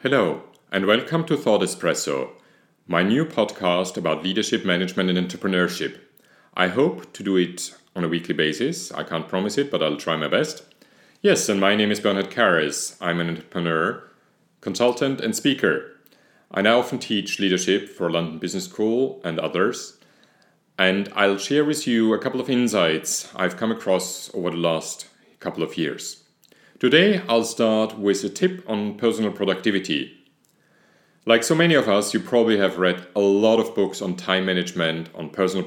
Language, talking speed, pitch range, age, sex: English, 170 wpm, 90-120 Hz, 40-59, male